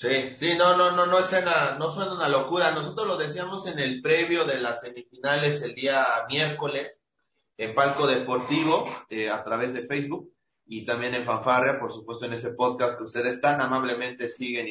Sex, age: male, 30-49